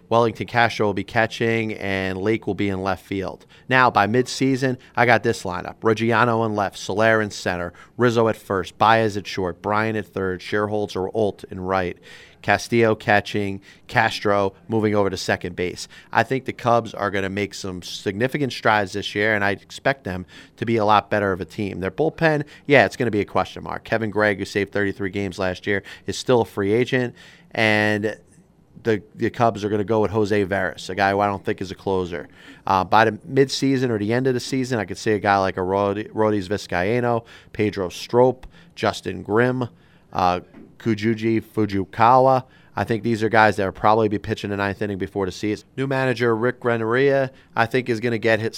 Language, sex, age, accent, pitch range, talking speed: English, male, 30-49, American, 100-115 Hz, 210 wpm